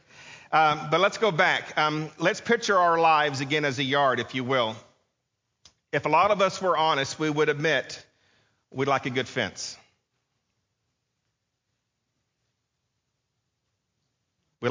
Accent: American